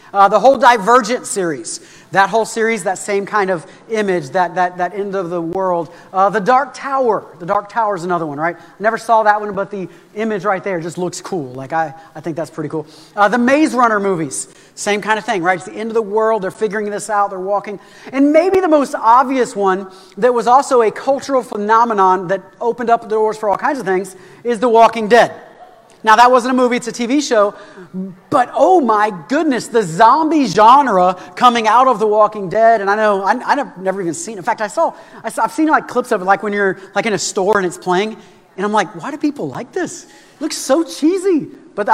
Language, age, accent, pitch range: English, 40-59, American, 190-250 Hz